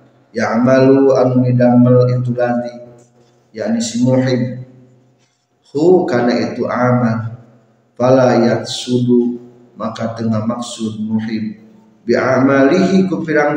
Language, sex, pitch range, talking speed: Indonesian, male, 115-140 Hz, 85 wpm